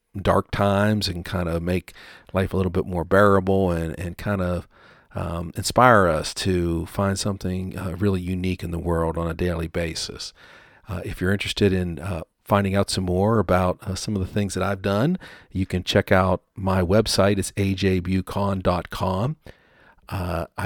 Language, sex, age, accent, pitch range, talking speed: English, male, 50-69, American, 90-100 Hz, 175 wpm